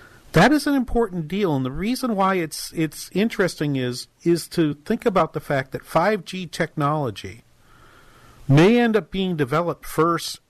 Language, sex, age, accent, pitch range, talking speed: English, male, 50-69, American, 125-165 Hz, 165 wpm